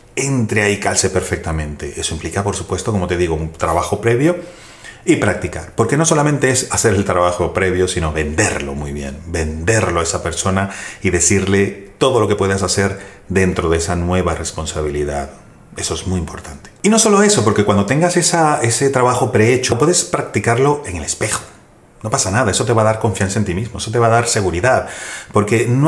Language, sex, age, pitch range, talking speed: Spanish, male, 30-49, 85-110 Hz, 195 wpm